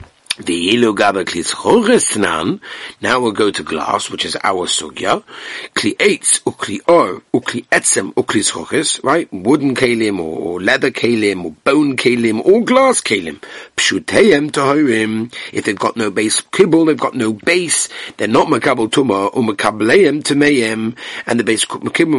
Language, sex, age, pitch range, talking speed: English, male, 60-79, 110-165 Hz, 140 wpm